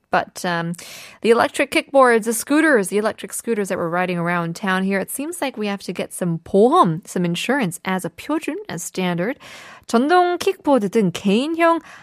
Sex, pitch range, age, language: female, 185-270 Hz, 20-39, Korean